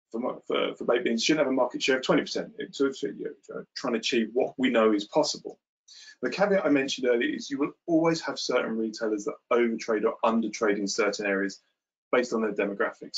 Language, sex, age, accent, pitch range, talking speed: English, male, 20-39, British, 115-155 Hz, 195 wpm